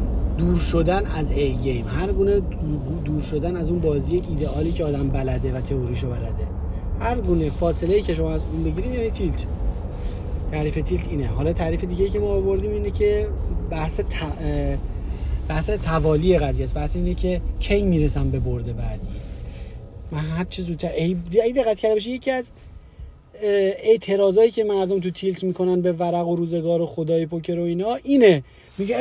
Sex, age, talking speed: male, 30-49, 170 wpm